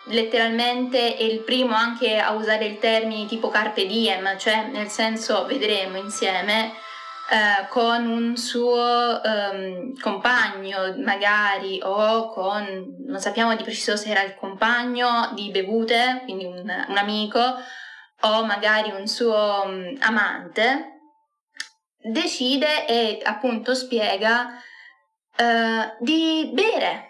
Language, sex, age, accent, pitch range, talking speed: Italian, female, 20-39, native, 210-250 Hz, 110 wpm